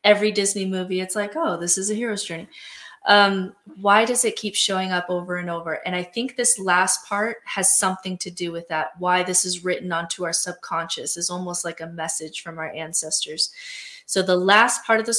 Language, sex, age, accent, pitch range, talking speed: English, female, 20-39, American, 175-205 Hz, 215 wpm